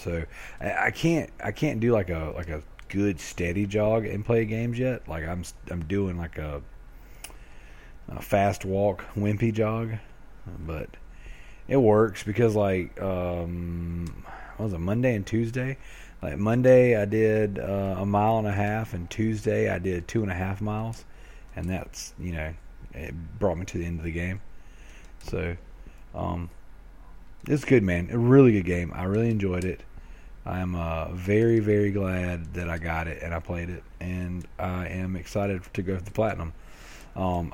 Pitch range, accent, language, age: 85-110 Hz, American, English, 30-49